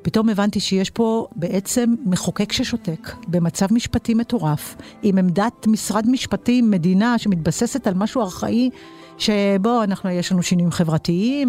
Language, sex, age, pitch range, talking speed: Hebrew, female, 50-69, 175-240 Hz, 130 wpm